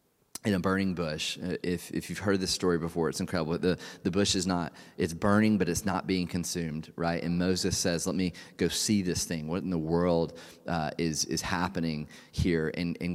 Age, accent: 30-49, American